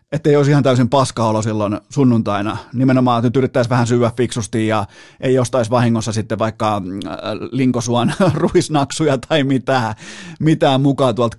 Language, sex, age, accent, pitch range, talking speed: Finnish, male, 30-49, native, 120-145 Hz, 135 wpm